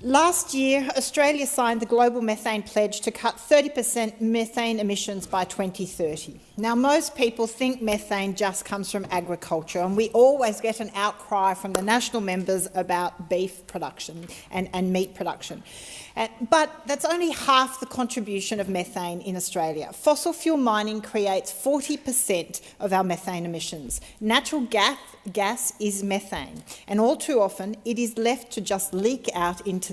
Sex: female